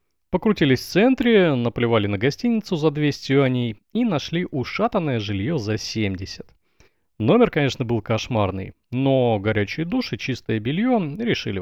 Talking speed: 130 wpm